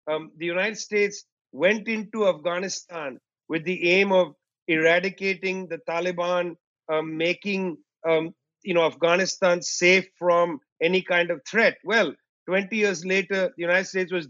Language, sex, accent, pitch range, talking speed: English, male, Indian, 165-195 Hz, 145 wpm